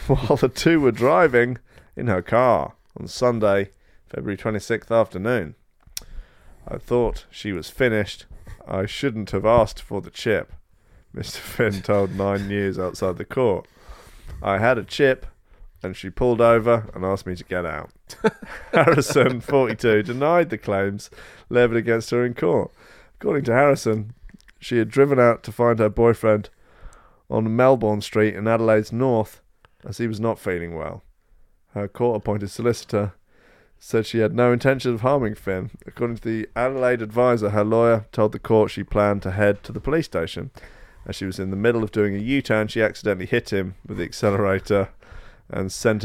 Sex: male